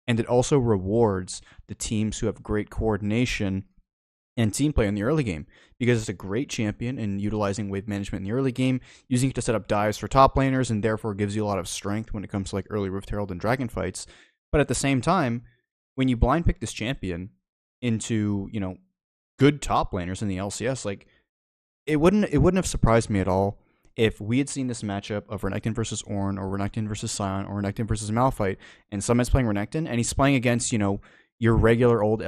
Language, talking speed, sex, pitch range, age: English, 220 wpm, male, 100-120 Hz, 20-39